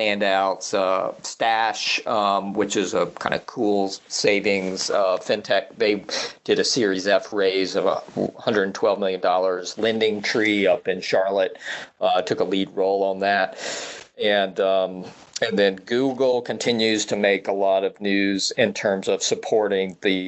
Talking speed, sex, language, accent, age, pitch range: 155 wpm, male, English, American, 40-59, 95-115 Hz